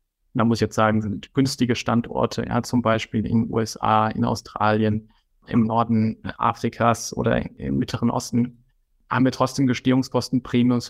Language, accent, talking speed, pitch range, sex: German, German, 150 wpm, 115-125 Hz, male